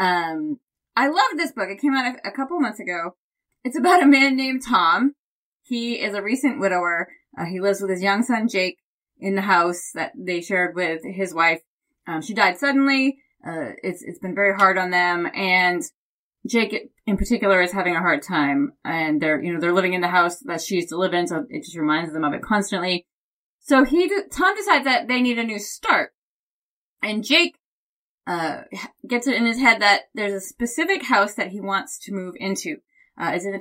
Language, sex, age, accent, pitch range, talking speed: English, female, 20-39, American, 185-275 Hz, 210 wpm